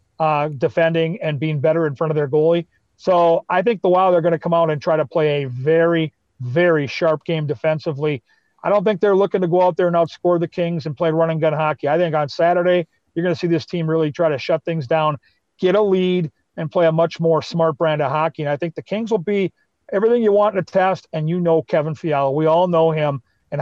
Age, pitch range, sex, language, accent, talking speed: 40-59, 155-175 Hz, male, English, American, 250 wpm